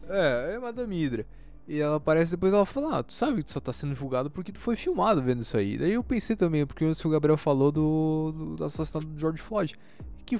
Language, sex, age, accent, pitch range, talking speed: Portuguese, male, 20-39, Brazilian, 150-205 Hz, 250 wpm